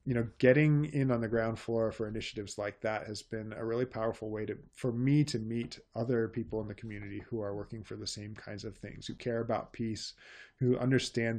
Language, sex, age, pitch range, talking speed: English, male, 20-39, 105-125 Hz, 225 wpm